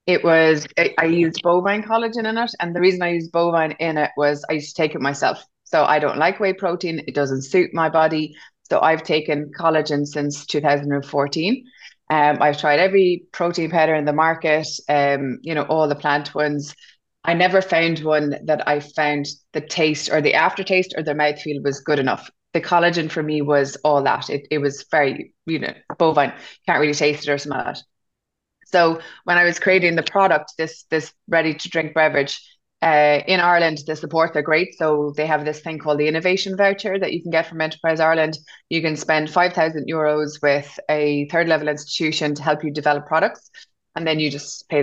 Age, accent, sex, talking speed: 20-39, Irish, female, 205 wpm